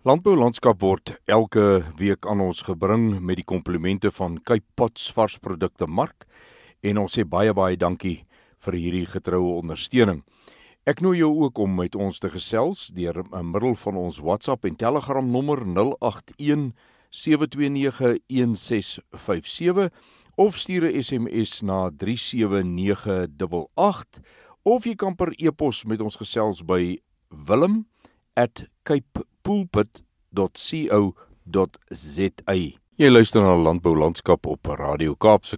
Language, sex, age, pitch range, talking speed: Swedish, male, 60-79, 90-125 Hz, 120 wpm